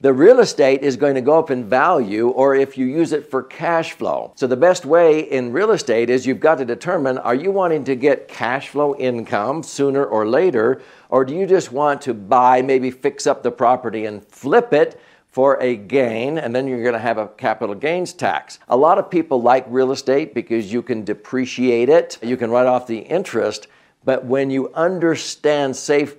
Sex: male